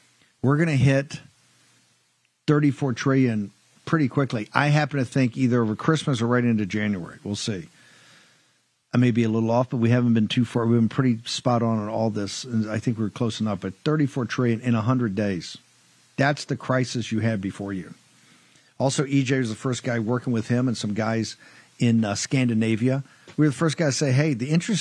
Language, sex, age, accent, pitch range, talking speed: English, male, 50-69, American, 120-150 Hz, 205 wpm